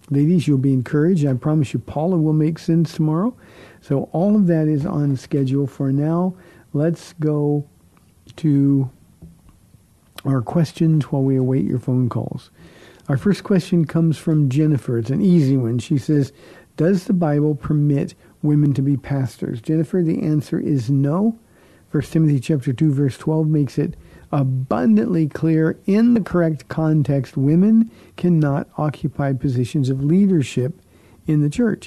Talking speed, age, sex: 150 wpm, 50-69, male